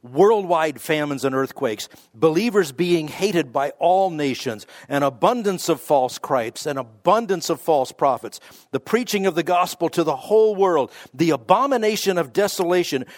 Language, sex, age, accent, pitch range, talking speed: English, male, 50-69, American, 150-205 Hz, 150 wpm